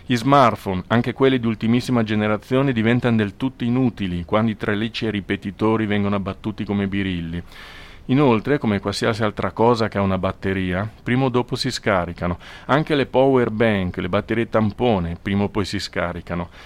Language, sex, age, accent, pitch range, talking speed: Italian, male, 40-59, native, 100-120 Hz, 170 wpm